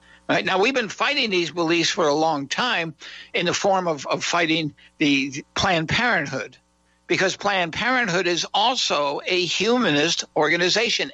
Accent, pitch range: American, 145-190 Hz